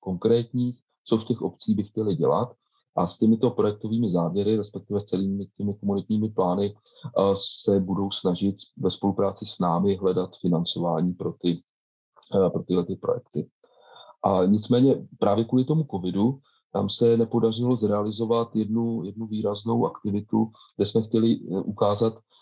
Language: Czech